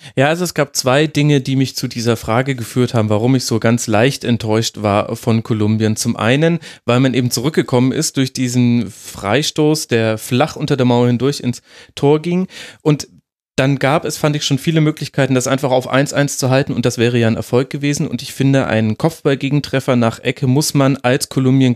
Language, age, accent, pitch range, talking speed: German, 30-49, German, 115-140 Hz, 205 wpm